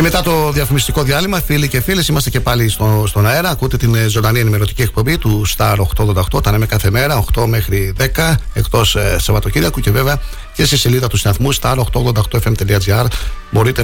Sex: male